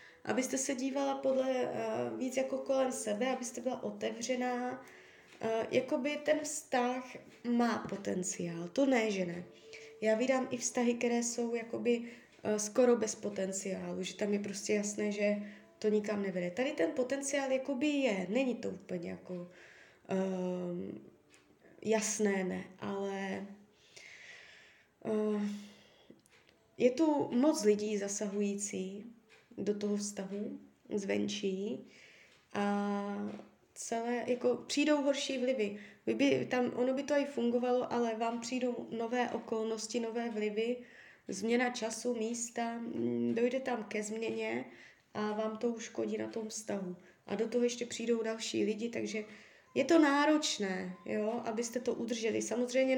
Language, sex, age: Czech, female, 20-39